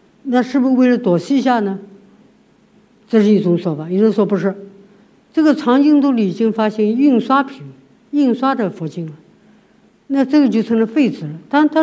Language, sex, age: Chinese, female, 50-69